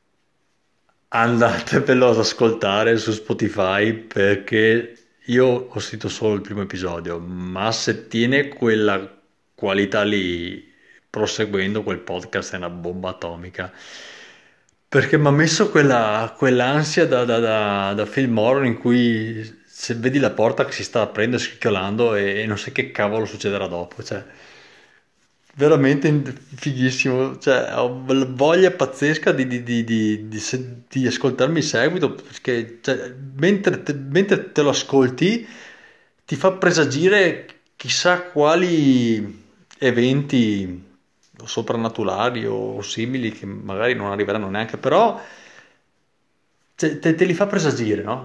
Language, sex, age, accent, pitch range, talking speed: Italian, male, 30-49, native, 105-135 Hz, 115 wpm